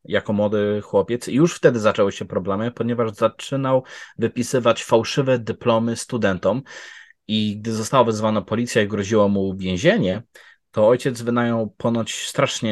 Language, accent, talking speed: Polish, native, 135 wpm